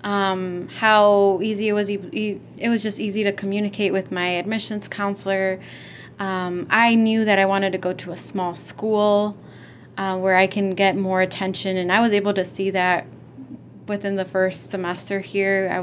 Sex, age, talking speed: female, 20-39, 180 wpm